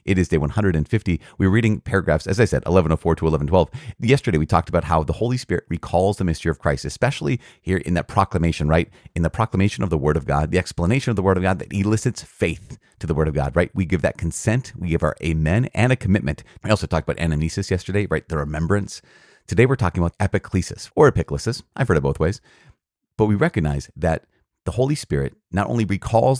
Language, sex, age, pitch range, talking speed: English, male, 30-49, 80-105 Hz, 225 wpm